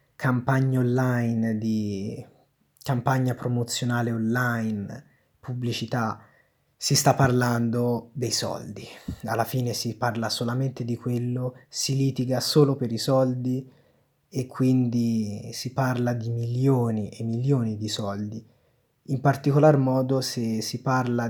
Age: 30-49